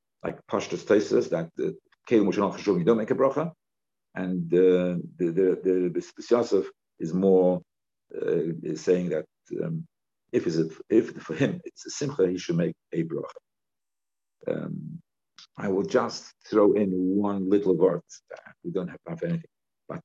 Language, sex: English, male